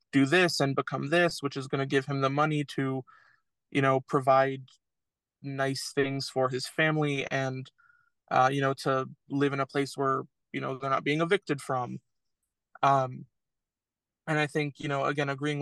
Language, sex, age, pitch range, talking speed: English, male, 20-39, 135-150 Hz, 180 wpm